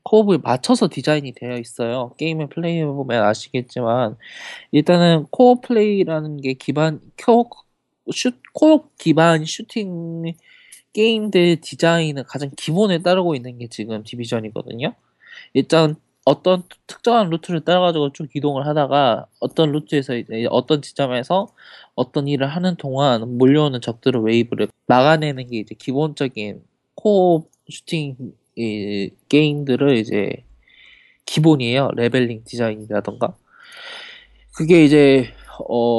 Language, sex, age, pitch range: Korean, male, 20-39, 125-180 Hz